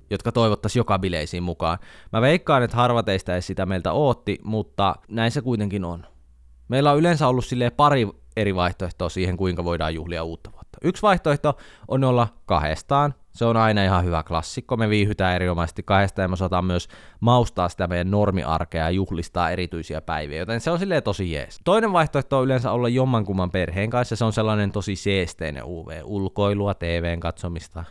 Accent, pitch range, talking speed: native, 85-115 Hz, 170 wpm